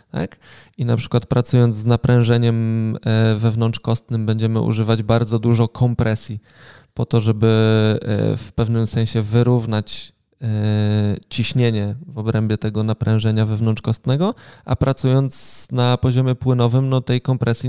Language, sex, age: Polish, male, 20-39